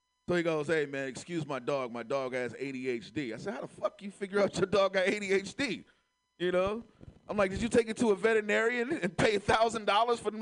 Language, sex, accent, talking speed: English, male, American, 235 wpm